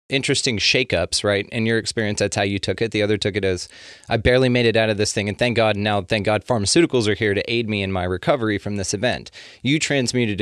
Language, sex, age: English, male, 30-49